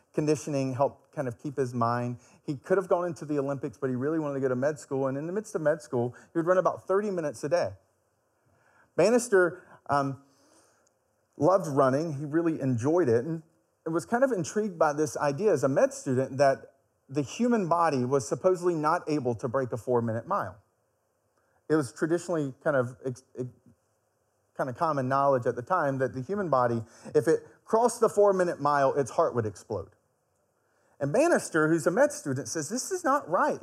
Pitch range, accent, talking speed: 130-195 Hz, American, 190 wpm